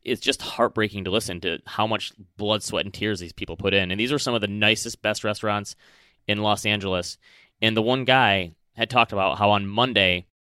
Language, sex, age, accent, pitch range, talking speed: English, male, 30-49, American, 95-110 Hz, 220 wpm